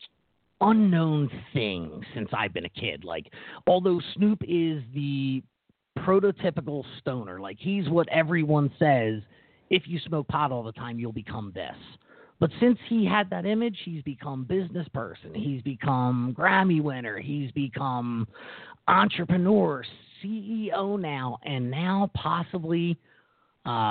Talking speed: 130 wpm